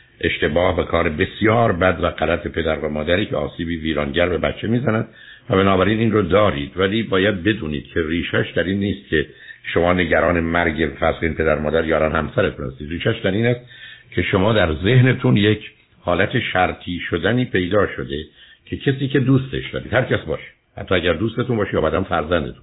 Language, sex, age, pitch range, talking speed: Persian, male, 60-79, 80-105 Hz, 180 wpm